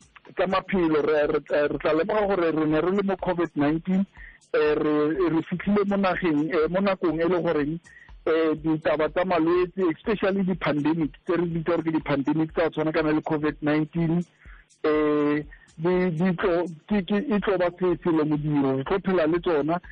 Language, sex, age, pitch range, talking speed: English, male, 50-69, 155-185 Hz, 60 wpm